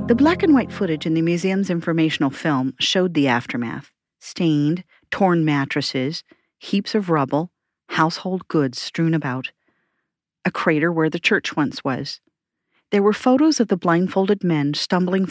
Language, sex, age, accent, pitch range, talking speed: English, female, 40-59, American, 140-185 Hz, 140 wpm